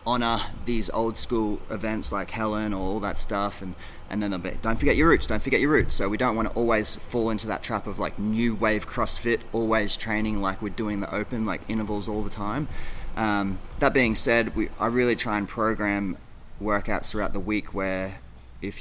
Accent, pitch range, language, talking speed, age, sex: Australian, 95-115 Hz, English, 215 wpm, 30-49, male